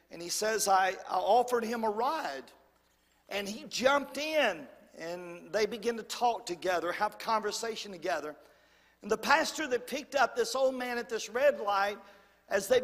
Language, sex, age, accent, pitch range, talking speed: English, male, 50-69, American, 200-245 Hz, 175 wpm